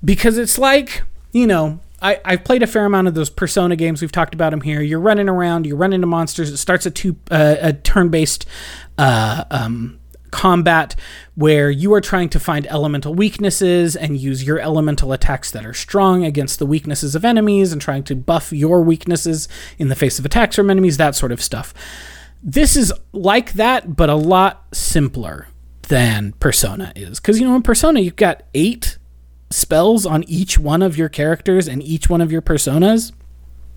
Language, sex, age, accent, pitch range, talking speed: English, male, 30-49, American, 135-185 Hz, 185 wpm